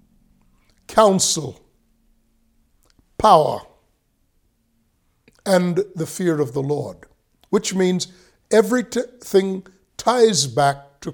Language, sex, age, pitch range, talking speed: English, male, 60-79, 145-195 Hz, 75 wpm